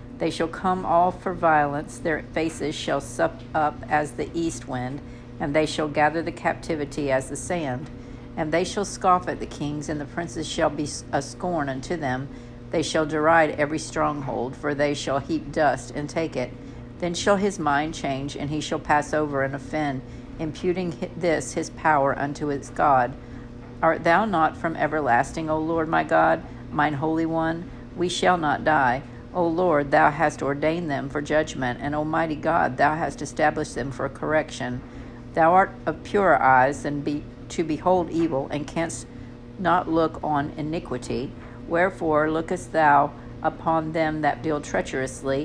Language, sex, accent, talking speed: English, female, American, 170 wpm